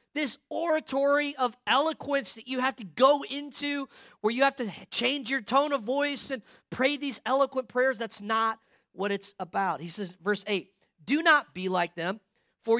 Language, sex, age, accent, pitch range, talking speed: English, male, 40-59, American, 210-275 Hz, 185 wpm